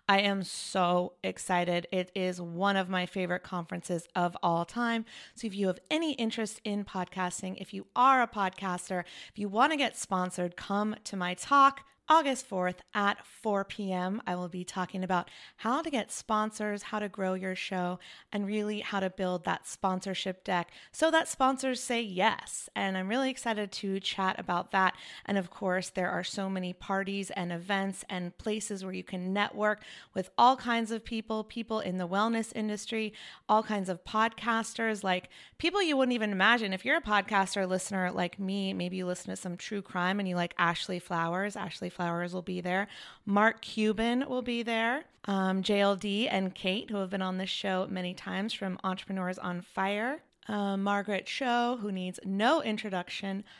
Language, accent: English, American